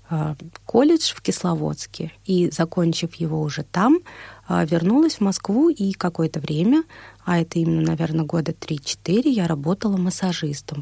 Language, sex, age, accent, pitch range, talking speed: Russian, female, 30-49, native, 165-210 Hz, 130 wpm